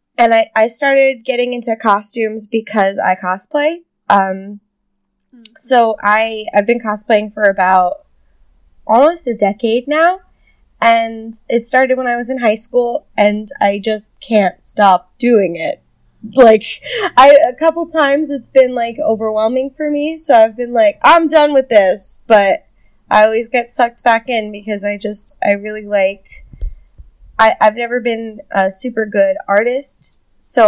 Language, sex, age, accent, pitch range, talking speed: English, female, 10-29, American, 200-255 Hz, 155 wpm